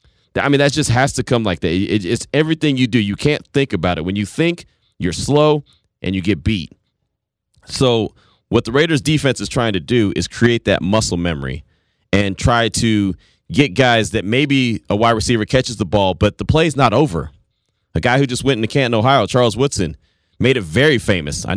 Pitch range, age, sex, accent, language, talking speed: 100-125 Hz, 30-49, male, American, English, 205 wpm